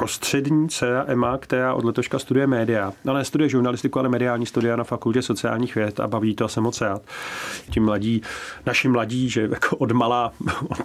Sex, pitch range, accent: male, 115-140 Hz, native